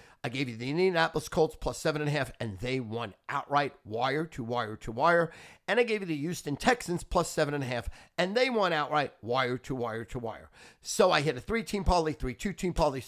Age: 50-69